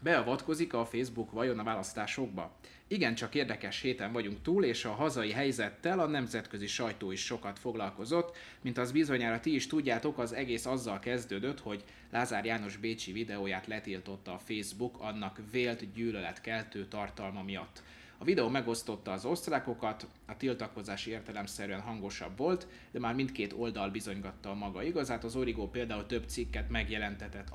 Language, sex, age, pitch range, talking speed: Hungarian, male, 30-49, 105-130 Hz, 150 wpm